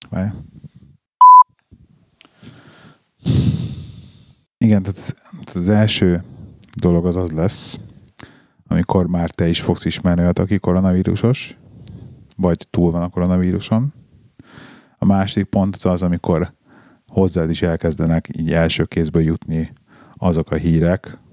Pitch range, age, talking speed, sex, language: 85-100 Hz, 30-49, 105 wpm, male, Hungarian